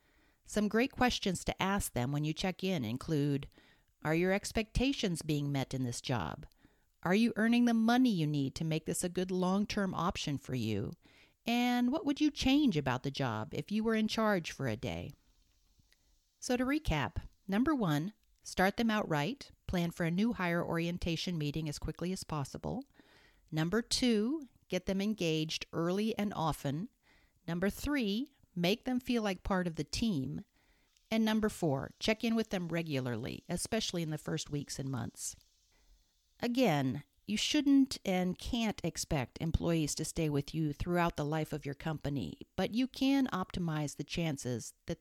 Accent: American